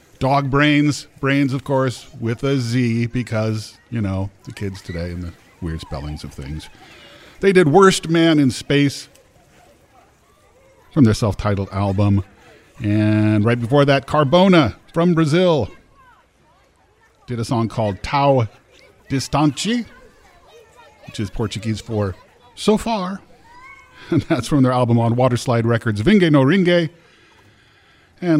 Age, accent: 40-59, American